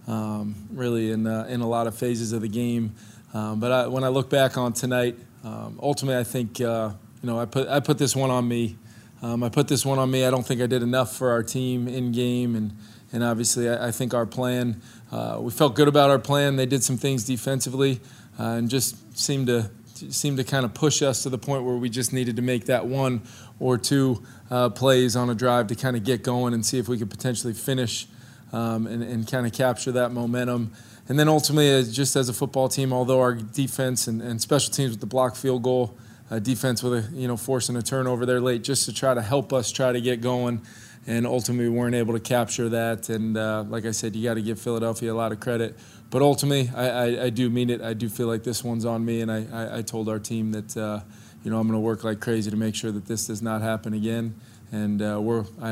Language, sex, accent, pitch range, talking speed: English, male, American, 115-130 Hz, 250 wpm